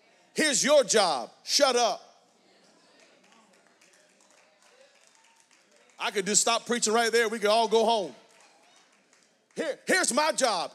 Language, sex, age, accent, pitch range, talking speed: English, male, 40-59, American, 210-265 Hz, 115 wpm